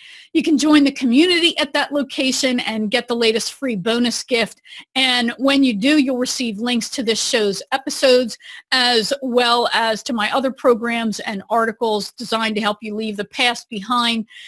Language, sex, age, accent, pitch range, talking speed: English, female, 40-59, American, 210-260 Hz, 180 wpm